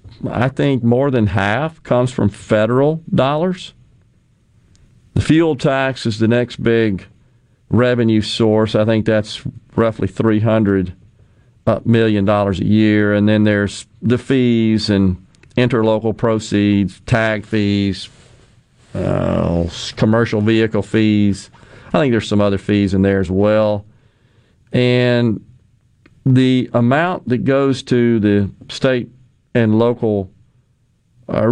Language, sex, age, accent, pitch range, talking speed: English, male, 40-59, American, 105-125 Hz, 115 wpm